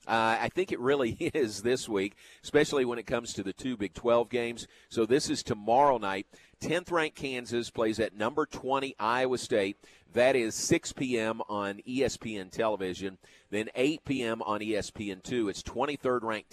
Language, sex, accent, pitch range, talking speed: English, male, American, 105-125 Hz, 165 wpm